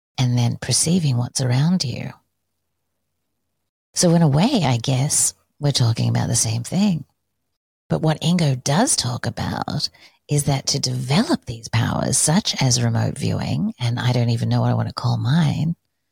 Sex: female